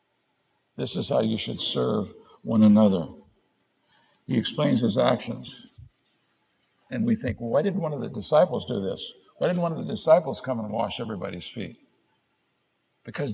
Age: 60-79